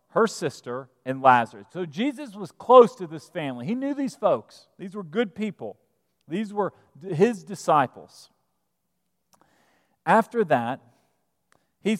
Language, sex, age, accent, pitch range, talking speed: English, male, 40-59, American, 135-185 Hz, 130 wpm